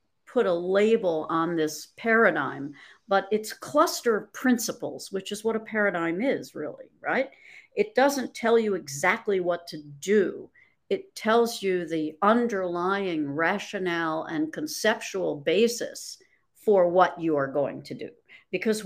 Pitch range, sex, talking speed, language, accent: 175-235 Hz, female, 140 wpm, English, American